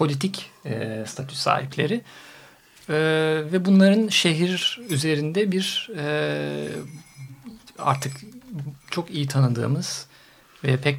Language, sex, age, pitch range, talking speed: Turkish, male, 50-69, 135-160 Hz, 95 wpm